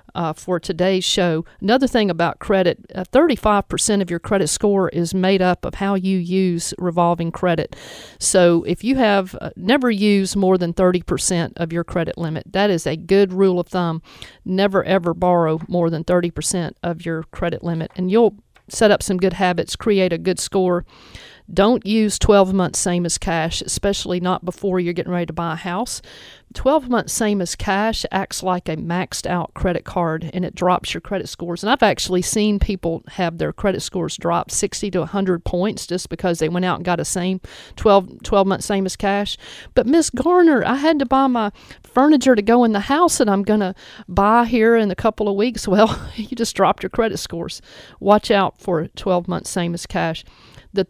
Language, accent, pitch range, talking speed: English, American, 175-210 Hz, 200 wpm